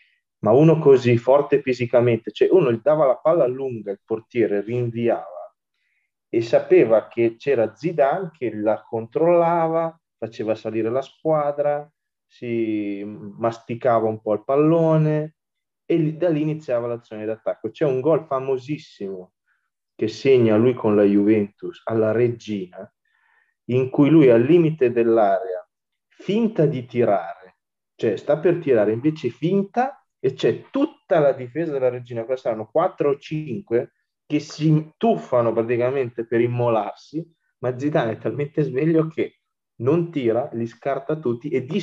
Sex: male